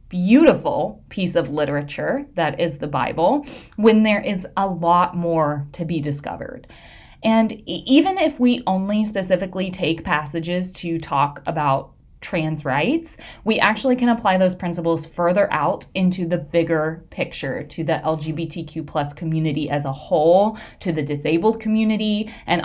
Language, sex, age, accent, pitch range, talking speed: English, female, 20-39, American, 160-220 Hz, 145 wpm